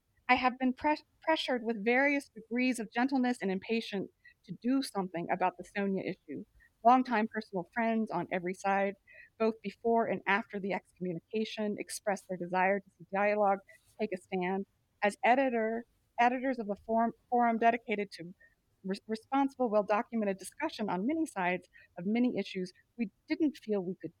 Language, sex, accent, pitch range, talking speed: English, female, American, 185-240 Hz, 150 wpm